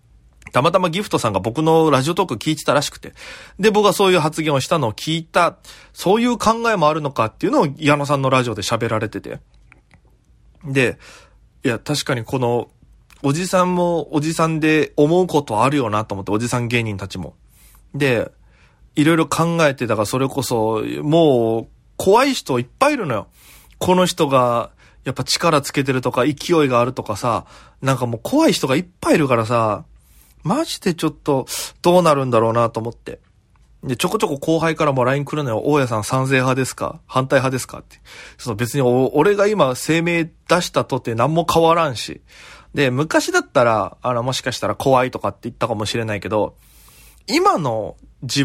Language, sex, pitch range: Japanese, male, 120-160 Hz